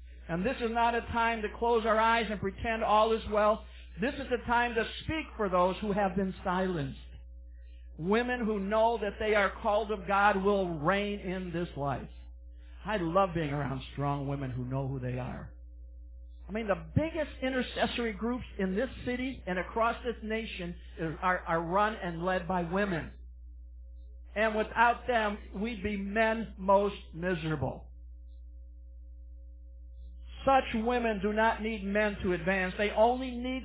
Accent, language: American, English